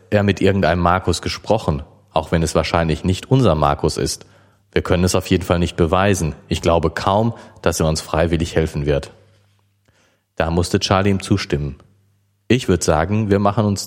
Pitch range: 80-100 Hz